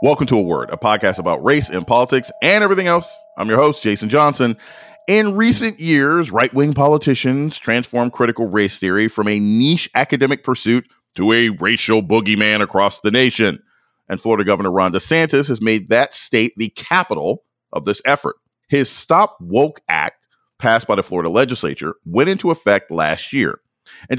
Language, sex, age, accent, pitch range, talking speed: English, male, 30-49, American, 110-165 Hz, 170 wpm